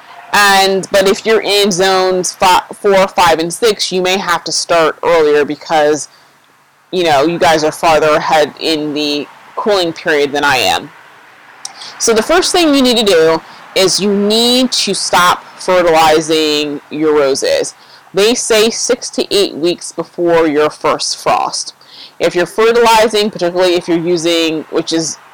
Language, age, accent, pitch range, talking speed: English, 30-49, American, 165-210 Hz, 155 wpm